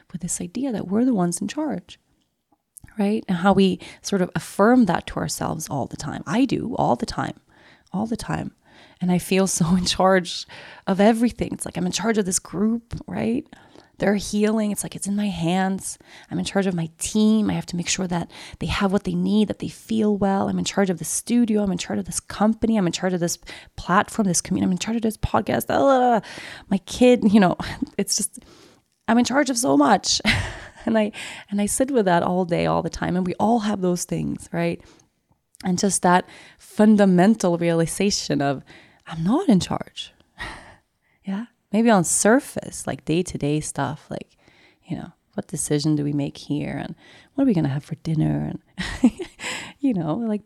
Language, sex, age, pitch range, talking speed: English, female, 30-49, 170-220 Hz, 205 wpm